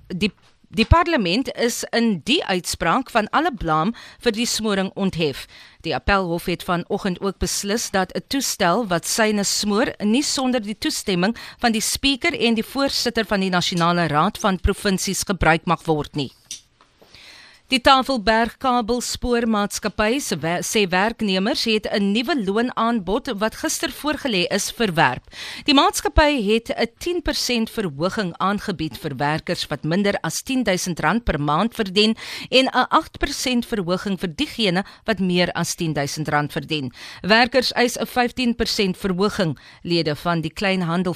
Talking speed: 140 wpm